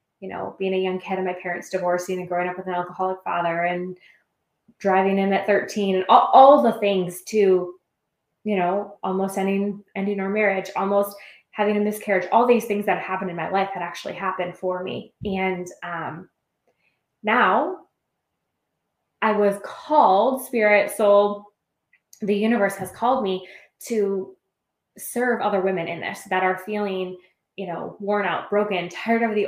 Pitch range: 185-210 Hz